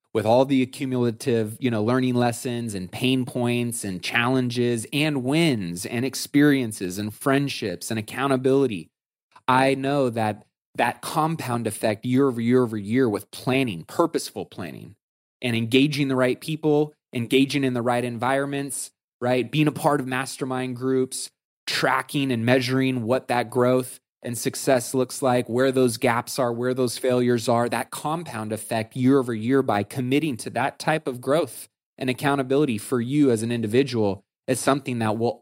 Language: English